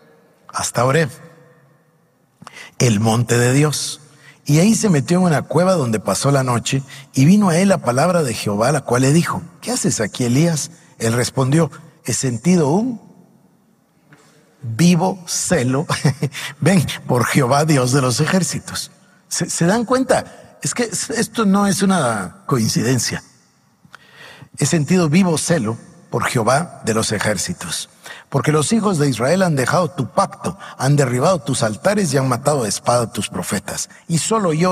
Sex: male